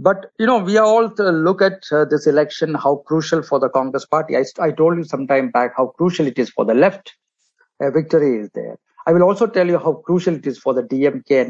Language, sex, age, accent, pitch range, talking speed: English, male, 50-69, Indian, 140-180 Hz, 260 wpm